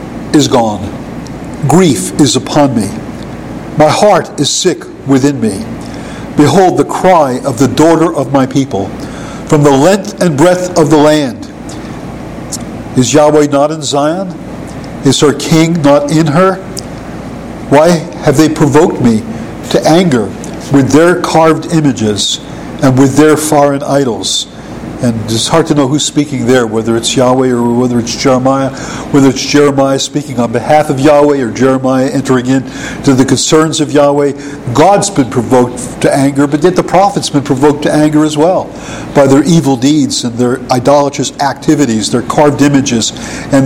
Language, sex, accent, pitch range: English, male, American, 130-155 Hz